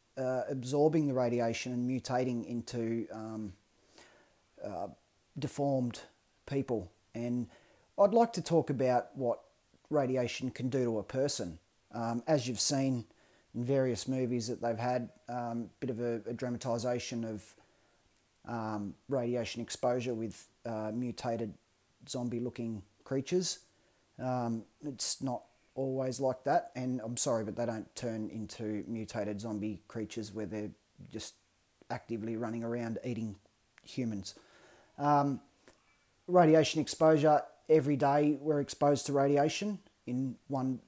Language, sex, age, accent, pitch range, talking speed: English, male, 30-49, Australian, 115-140 Hz, 125 wpm